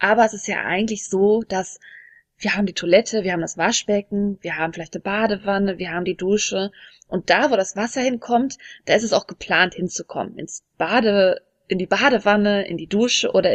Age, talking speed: 20-39, 200 wpm